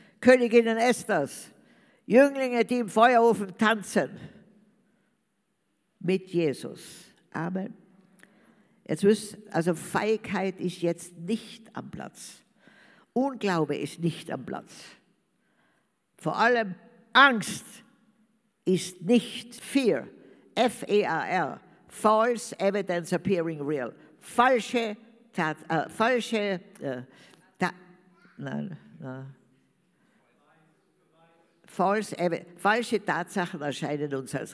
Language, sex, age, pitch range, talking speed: German, female, 60-79, 170-230 Hz, 85 wpm